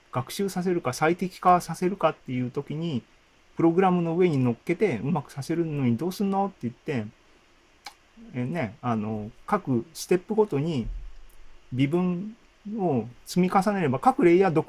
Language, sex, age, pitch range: Japanese, male, 40-59, 120-180 Hz